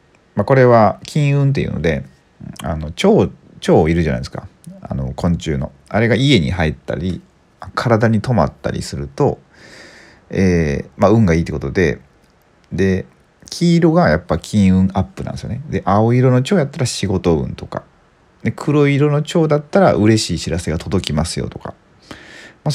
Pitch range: 75-115 Hz